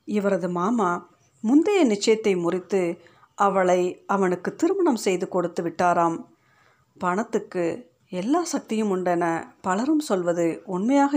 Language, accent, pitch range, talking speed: Tamil, native, 175-225 Hz, 95 wpm